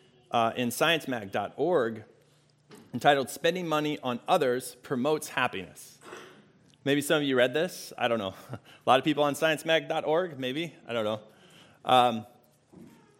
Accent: American